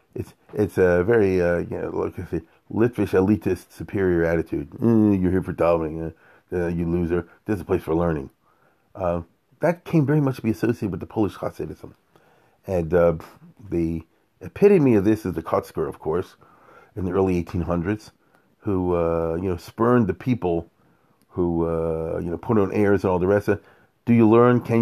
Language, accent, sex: English, American, male